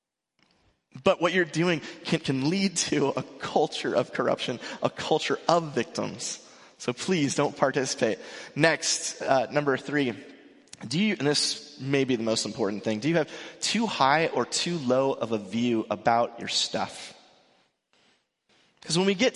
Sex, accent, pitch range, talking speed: male, American, 130-170 Hz, 160 wpm